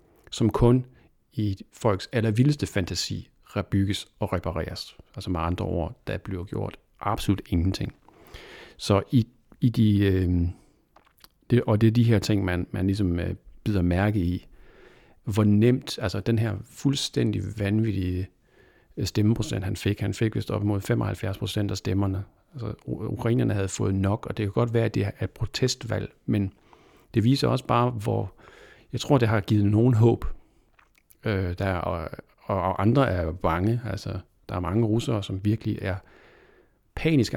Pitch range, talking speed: 95-110 Hz, 155 wpm